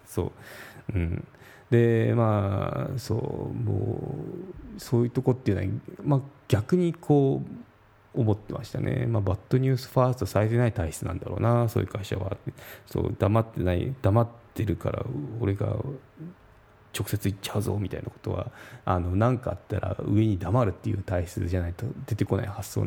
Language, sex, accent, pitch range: Japanese, male, native, 100-125 Hz